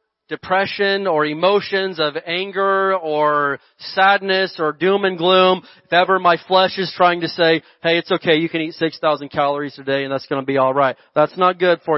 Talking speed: 200 wpm